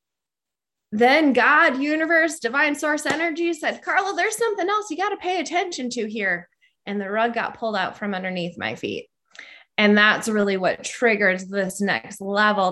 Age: 20-39